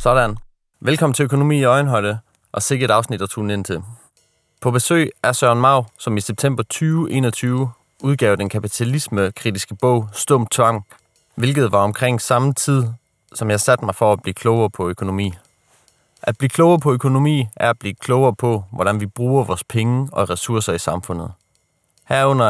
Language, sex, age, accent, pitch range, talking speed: Danish, male, 30-49, native, 100-125 Hz, 165 wpm